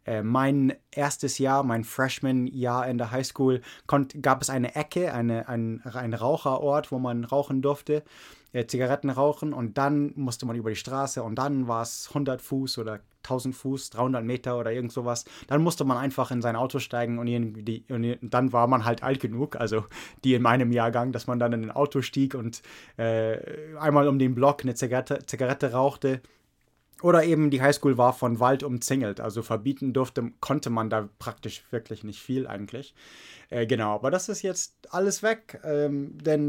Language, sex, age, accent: English, male, 20-39, German